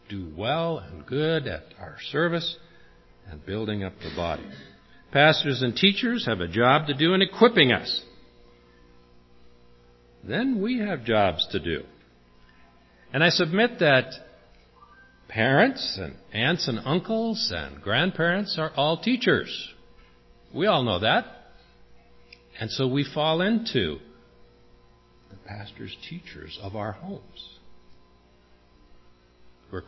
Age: 50-69